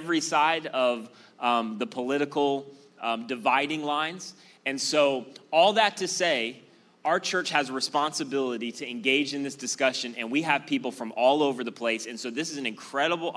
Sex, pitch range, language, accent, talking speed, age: male, 110-140 Hz, English, American, 180 wpm, 30-49